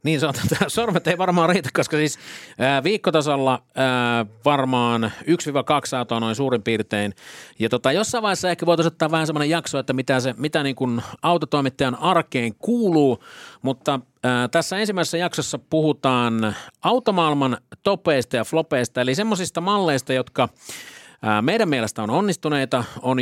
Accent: native